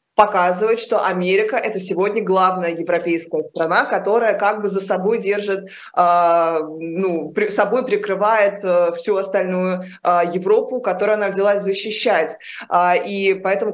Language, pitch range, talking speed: Russian, 175-210 Hz, 120 wpm